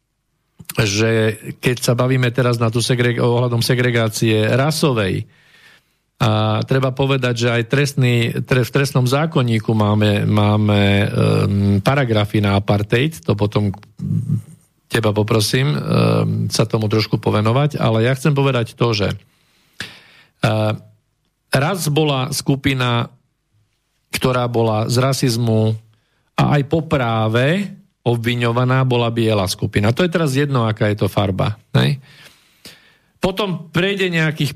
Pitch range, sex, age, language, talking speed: 115-145 Hz, male, 50-69, Slovak, 120 wpm